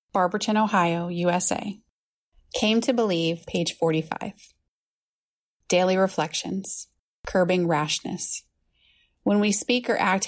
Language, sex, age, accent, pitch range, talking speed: English, female, 30-49, American, 165-190 Hz, 100 wpm